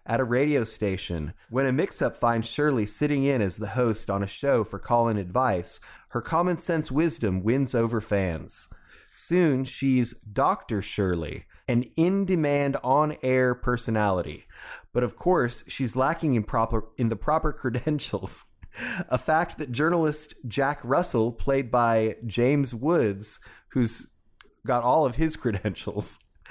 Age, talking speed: 30-49, 145 wpm